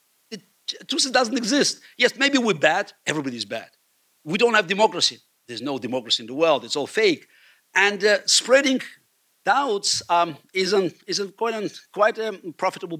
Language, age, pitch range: English, 60-79, 140-215 Hz